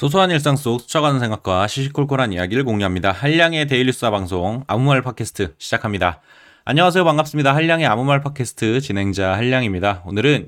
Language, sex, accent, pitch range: Korean, male, native, 100-145 Hz